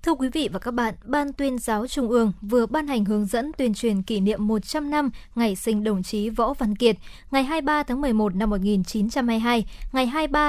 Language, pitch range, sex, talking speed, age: Vietnamese, 220-275 Hz, male, 210 wpm, 20-39